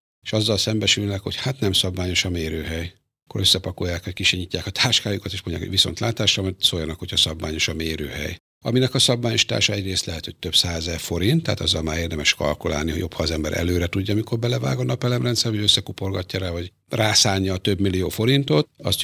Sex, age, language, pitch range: male, 60-79, Hungarian, 85-115 Hz